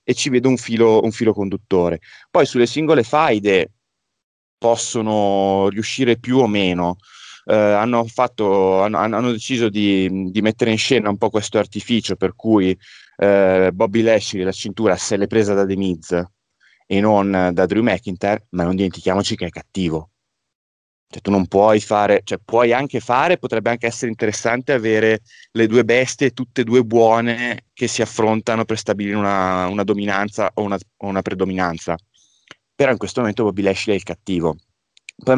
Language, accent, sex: Italian, native, male